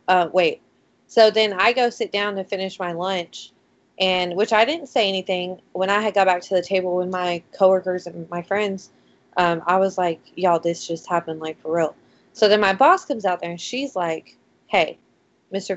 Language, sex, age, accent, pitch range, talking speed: English, female, 20-39, American, 180-220 Hz, 210 wpm